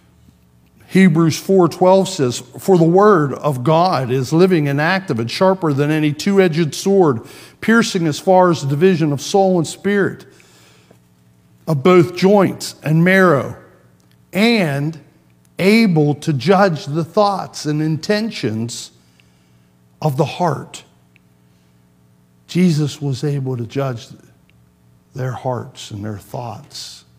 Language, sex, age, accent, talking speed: English, male, 50-69, American, 120 wpm